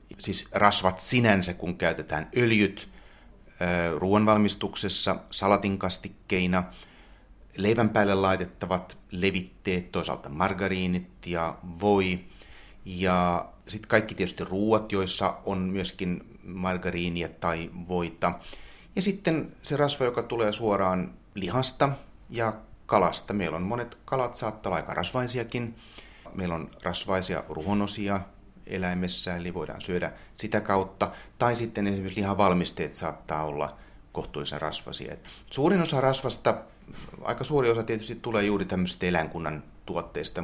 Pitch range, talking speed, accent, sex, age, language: 90-110 Hz, 110 wpm, native, male, 30-49, Finnish